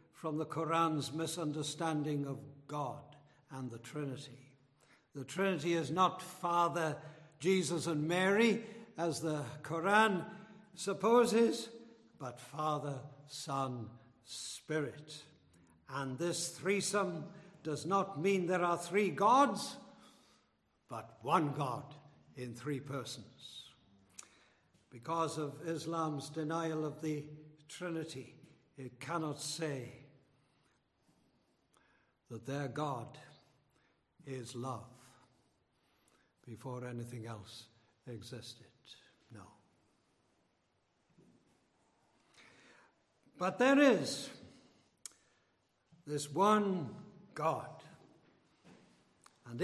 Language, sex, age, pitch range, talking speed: English, male, 70-89, 135-175 Hz, 80 wpm